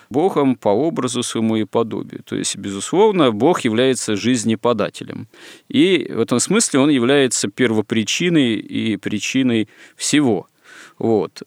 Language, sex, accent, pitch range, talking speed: Russian, male, native, 105-125 Hz, 120 wpm